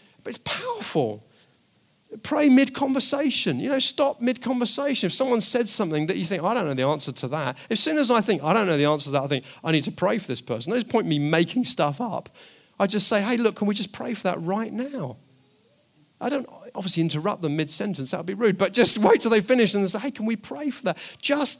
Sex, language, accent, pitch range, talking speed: male, English, British, 155-220 Hz, 245 wpm